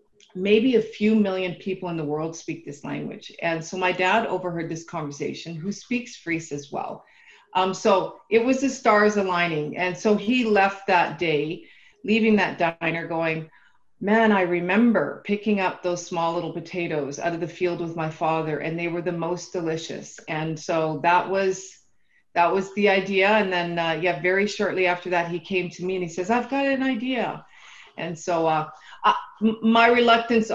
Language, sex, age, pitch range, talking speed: English, female, 40-59, 165-210 Hz, 185 wpm